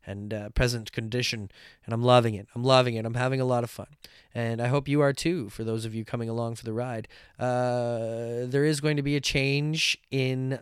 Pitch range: 115-135 Hz